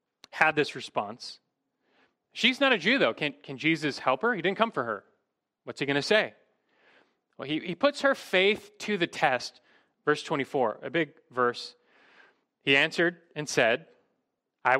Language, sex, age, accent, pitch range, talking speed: English, male, 30-49, American, 135-195 Hz, 170 wpm